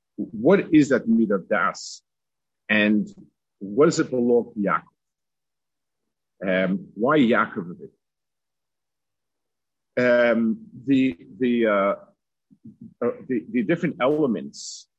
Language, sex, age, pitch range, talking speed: English, male, 50-69, 95-135 Hz, 90 wpm